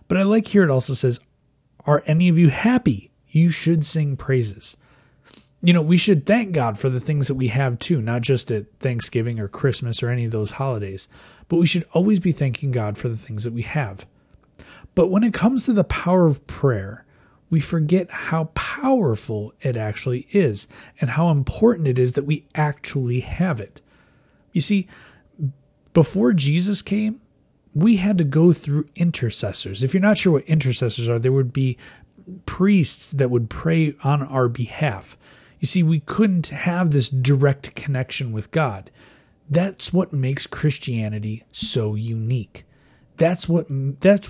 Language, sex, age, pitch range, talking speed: English, male, 30-49, 125-175 Hz, 170 wpm